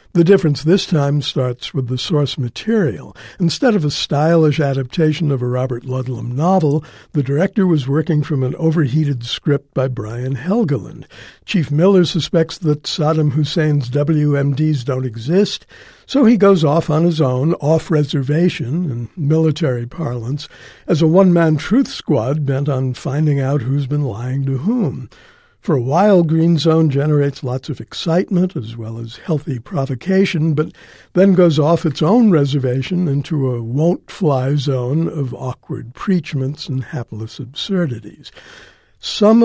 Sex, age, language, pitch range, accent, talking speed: male, 60-79, English, 135-165 Hz, American, 150 wpm